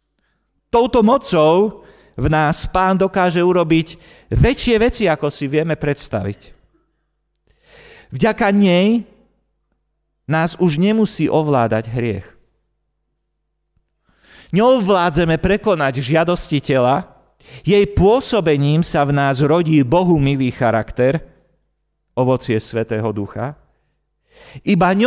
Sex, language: male, Slovak